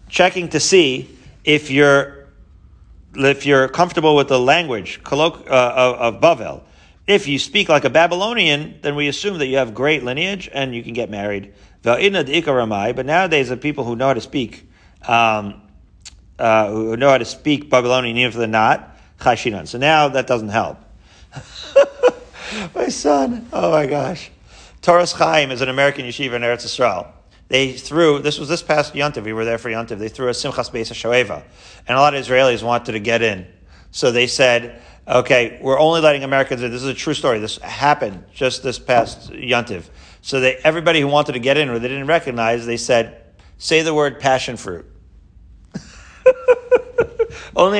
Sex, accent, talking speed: male, American, 175 wpm